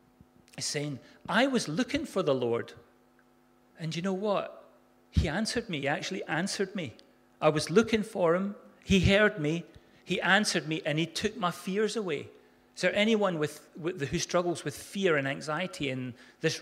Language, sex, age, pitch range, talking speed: English, male, 40-59, 160-220 Hz, 165 wpm